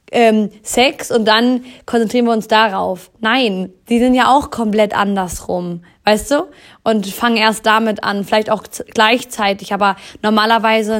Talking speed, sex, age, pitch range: 140 wpm, female, 20-39, 195-225 Hz